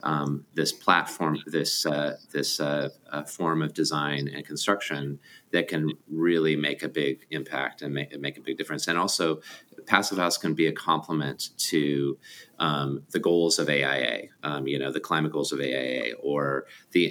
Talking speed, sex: 175 wpm, male